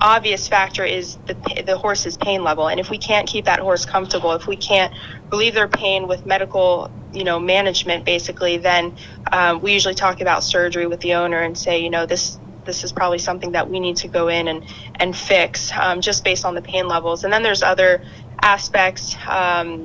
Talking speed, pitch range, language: 210 wpm, 175-200 Hz, English